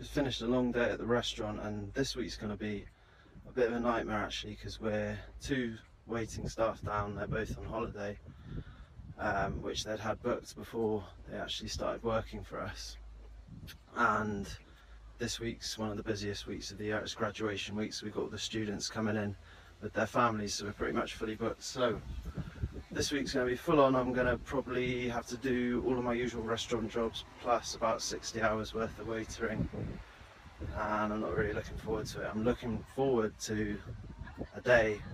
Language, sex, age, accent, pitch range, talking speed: English, male, 20-39, British, 100-115 Hz, 195 wpm